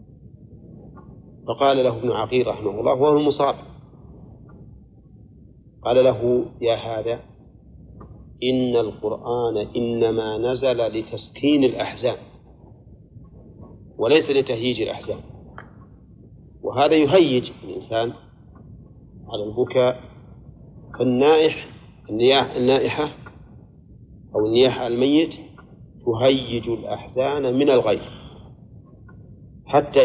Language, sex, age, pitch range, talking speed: Arabic, male, 40-59, 115-140 Hz, 70 wpm